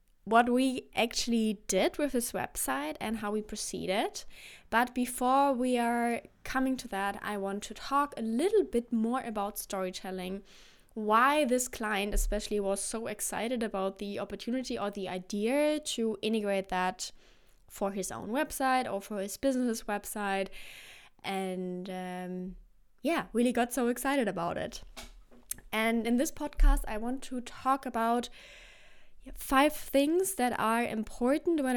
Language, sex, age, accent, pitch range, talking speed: English, female, 20-39, German, 205-265 Hz, 145 wpm